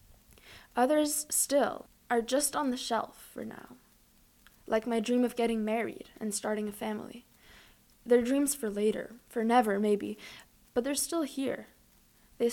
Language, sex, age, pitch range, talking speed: English, female, 20-39, 210-240 Hz, 150 wpm